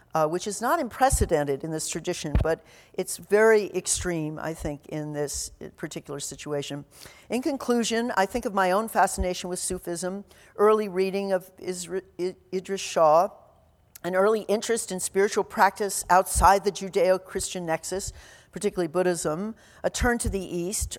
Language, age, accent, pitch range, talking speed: English, 50-69, American, 165-195 Hz, 145 wpm